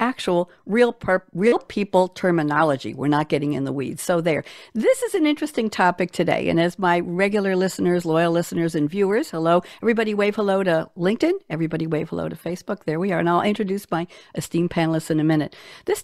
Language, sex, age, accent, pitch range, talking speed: English, female, 60-79, American, 170-225 Hz, 195 wpm